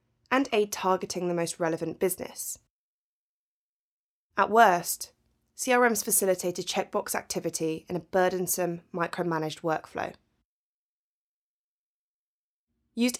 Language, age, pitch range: English, 20-39, 170-210 Hz